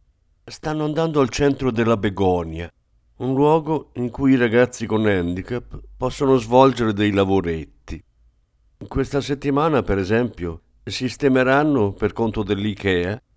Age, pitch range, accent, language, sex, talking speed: 50-69, 95-135 Hz, native, Italian, male, 115 wpm